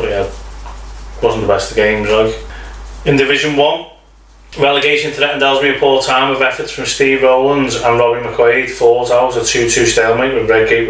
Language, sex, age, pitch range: English, male, 20-39, 120-140 Hz